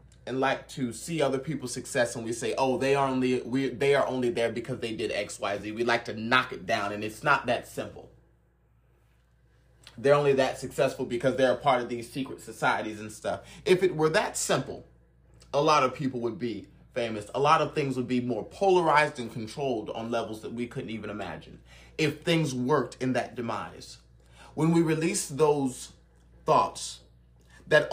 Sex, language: male, English